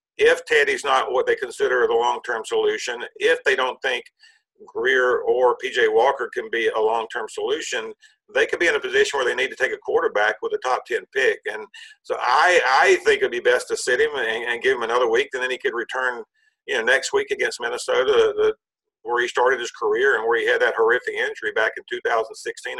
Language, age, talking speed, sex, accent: English, 50-69, 220 wpm, male, American